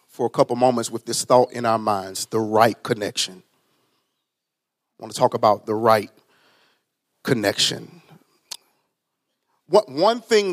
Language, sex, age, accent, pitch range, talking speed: English, male, 40-59, American, 115-145 Hz, 130 wpm